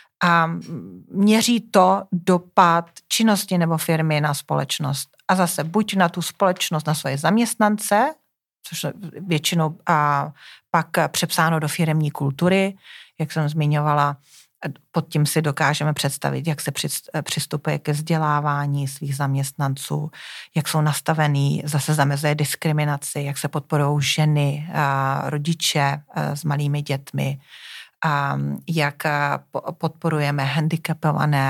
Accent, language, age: native, Czech, 30-49